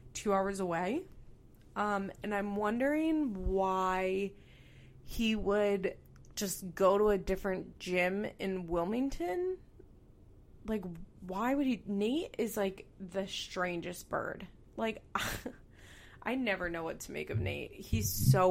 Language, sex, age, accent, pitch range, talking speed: English, female, 20-39, American, 175-215 Hz, 125 wpm